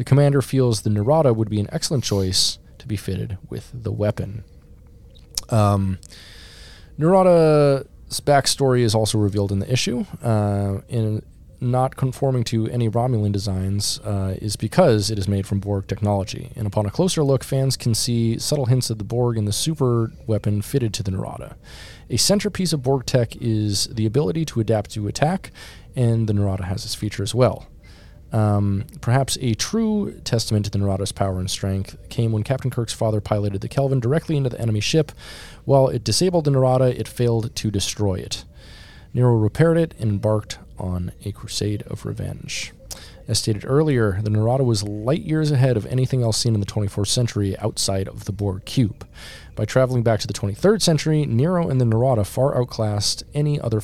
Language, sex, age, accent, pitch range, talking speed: English, male, 20-39, American, 100-130 Hz, 185 wpm